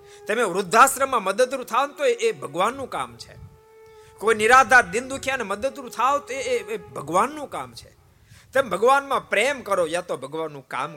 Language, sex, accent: Gujarati, male, native